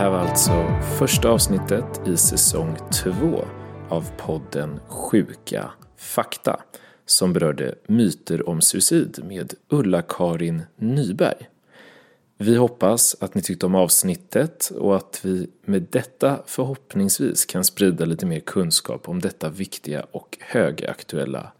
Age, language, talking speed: 30-49, Swedish, 120 wpm